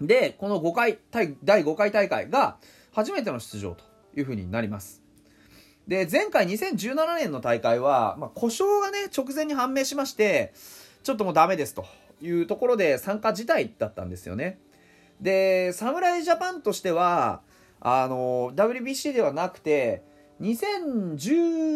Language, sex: Japanese, male